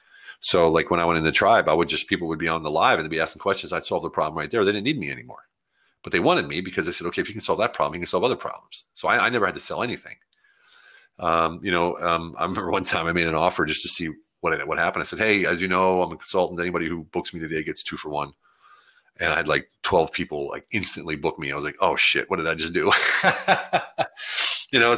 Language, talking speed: English, 285 wpm